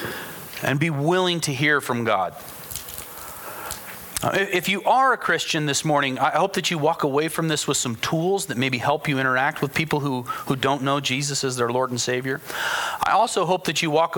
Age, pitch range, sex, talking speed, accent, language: 40-59, 120-155 Hz, male, 205 wpm, American, English